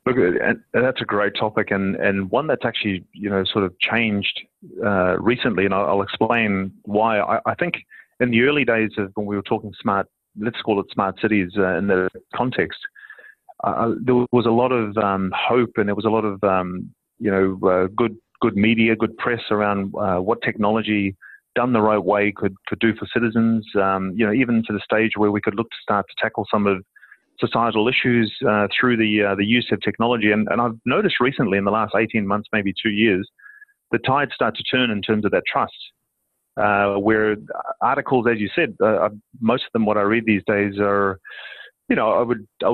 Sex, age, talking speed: male, 30-49, 215 wpm